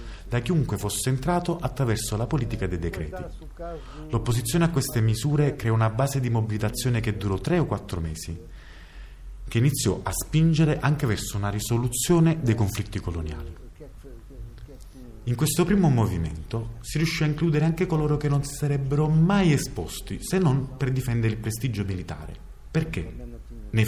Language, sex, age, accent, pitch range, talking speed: Italian, male, 30-49, native, 105-145 Hz, 150 wpm